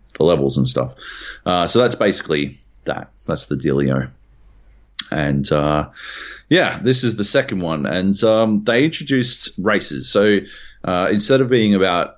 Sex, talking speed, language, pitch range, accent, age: male, 155 wpm, English, 75-100 Hz, Australian, 30-49